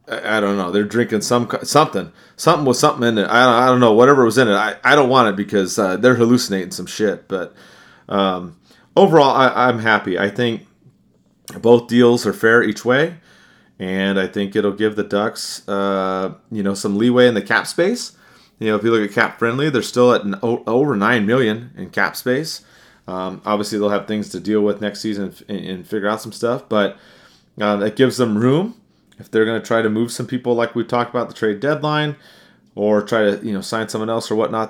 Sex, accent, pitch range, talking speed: male, American, 100-125 Hz, 220 wpm